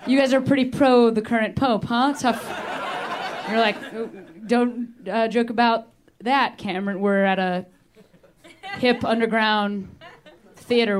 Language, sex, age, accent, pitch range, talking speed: English, female, 30-49, American, 190-295 Hz, 135 wpm